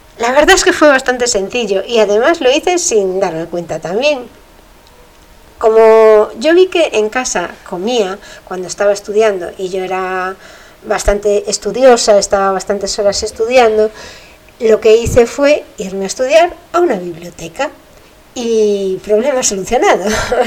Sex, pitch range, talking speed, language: female, 195-250 Hz, 140 wpm, Spanish